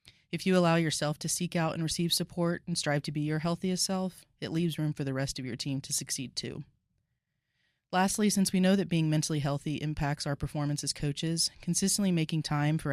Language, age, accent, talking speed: English, 20-39, American, 215 wpm